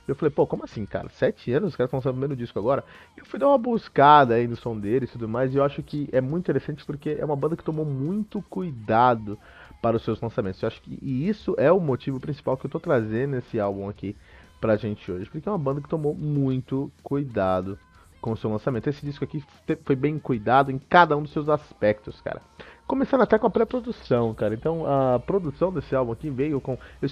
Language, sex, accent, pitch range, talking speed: Portuguese, male, Brazilian, 120-160 Hz, 230 wpm